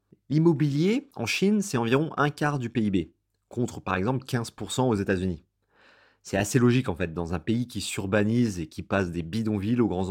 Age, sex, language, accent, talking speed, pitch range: 30-49, male, French, French, 190 wpm, 95-130 Hz